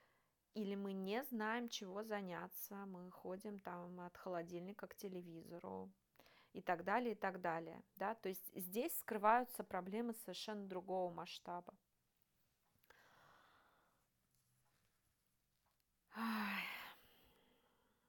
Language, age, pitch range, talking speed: Russian, 30-49, 180-225 Hz, 95 wpm